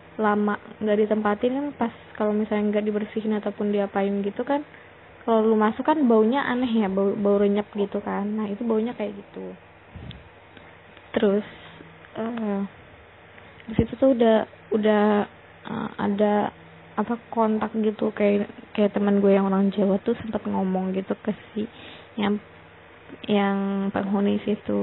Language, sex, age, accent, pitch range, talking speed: Indonesian, female, 20-39, native, 200-225 Hz, 140 wpm